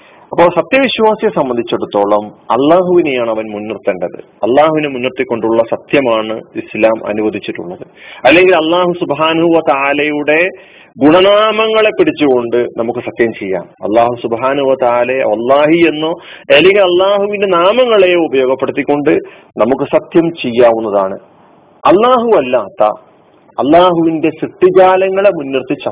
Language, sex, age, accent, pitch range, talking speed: Malayalam, male, 40-59, native, 130-180 Hz, 85 wpm